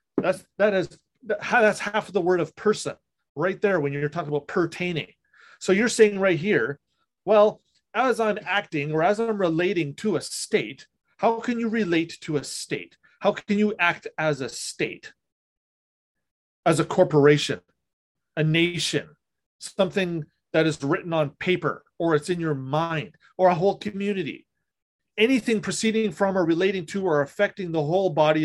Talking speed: 165 wpm